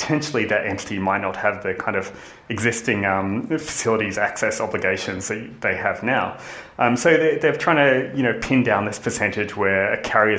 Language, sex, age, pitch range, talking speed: English, male, 20-39, 100-135 Hz, 190 wpm